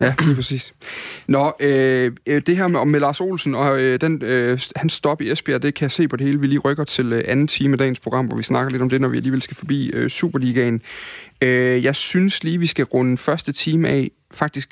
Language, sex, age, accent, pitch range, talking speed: Danish, male, 30-49, native, 125-150 Hz, 245 wpm